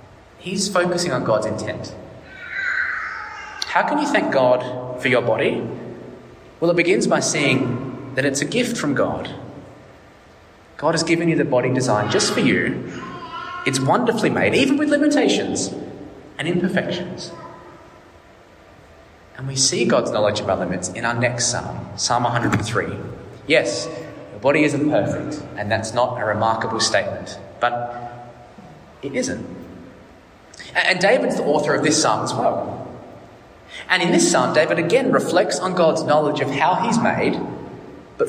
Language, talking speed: English, 145 wpm